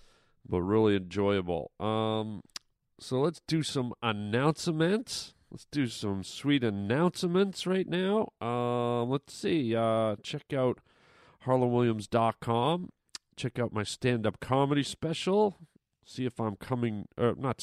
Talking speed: 120 wpm